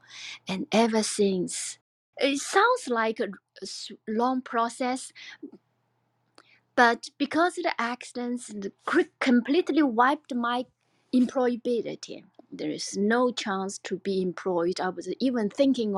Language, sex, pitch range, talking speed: English, female, 200-260 Hz, 115 wpm